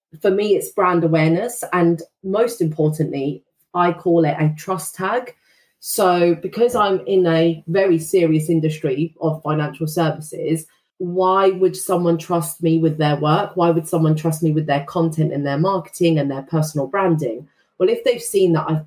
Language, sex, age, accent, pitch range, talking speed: English, female, 30-49, British, 160-190 Hz, 170 wpm